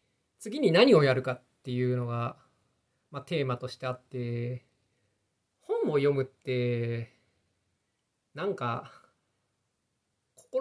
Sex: male